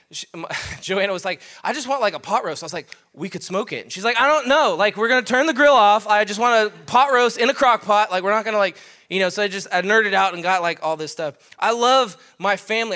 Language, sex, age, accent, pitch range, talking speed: English, male, 20-39, American, 180-230 Hz, 290 wpm